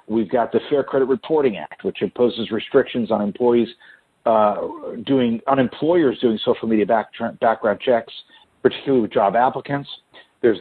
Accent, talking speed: American, 155 wpm